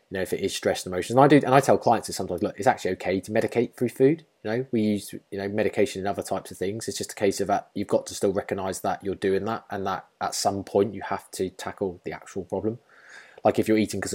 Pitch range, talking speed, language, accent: 95-110 Hz, 275 wpm, English, British